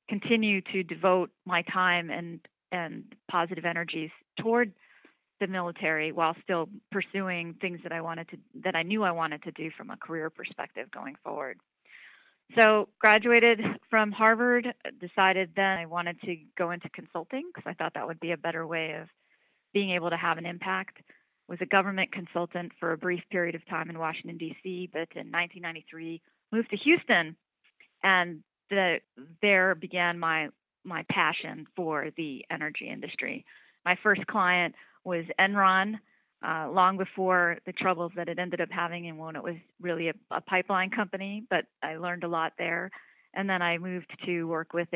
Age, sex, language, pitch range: 40-59, female, English, 165-195 Hz